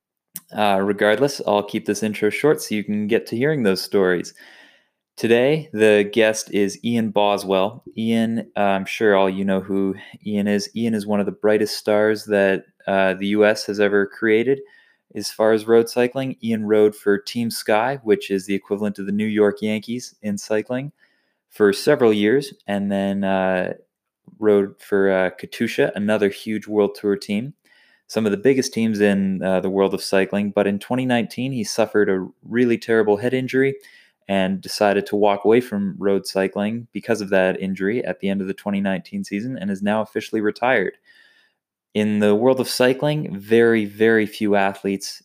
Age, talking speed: 20-39, 180 wpm